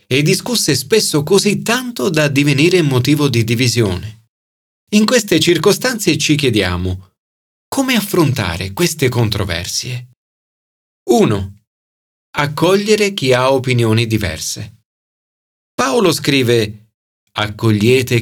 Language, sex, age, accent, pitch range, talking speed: Italian, male, 40-59, native, 100-145 Hz, 90 wpm